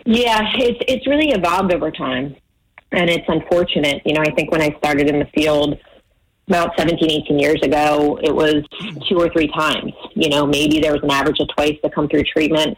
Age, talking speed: 30-49, 200 wpm